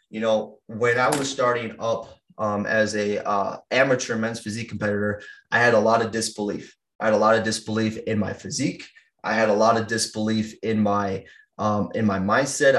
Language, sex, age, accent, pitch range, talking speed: English, male, 20-39, American, 110-120 Hz, 195 wpm